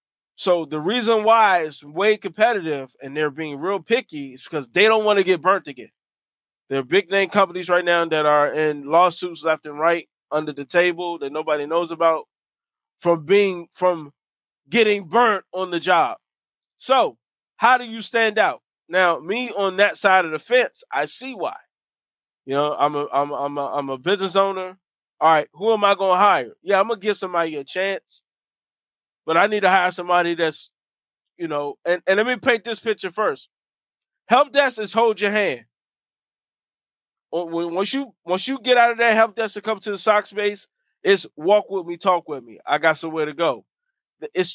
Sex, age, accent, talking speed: male, 20-39, American, 190 wpm